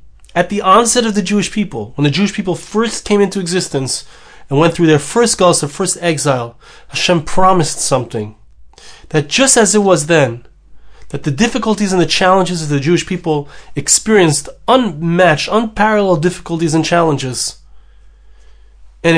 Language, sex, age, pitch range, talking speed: English, male, 30-49, 140-200 Hz, 155 wpm